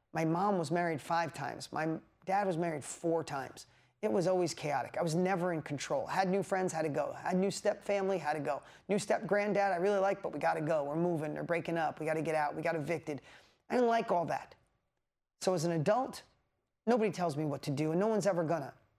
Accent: American